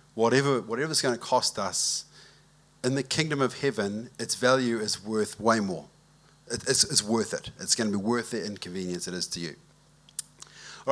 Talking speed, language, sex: 185 wpm, English, male